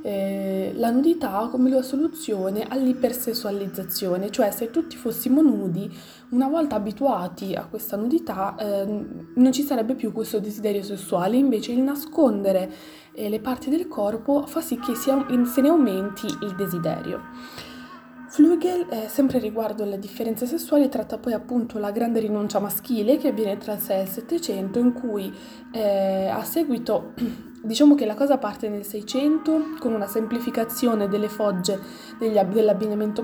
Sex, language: female, Italian